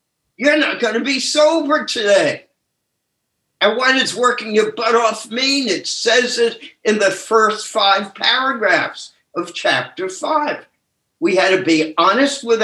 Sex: male